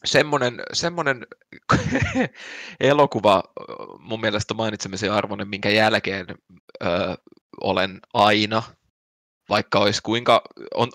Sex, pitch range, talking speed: male, 100-125 Hz, 90 wpm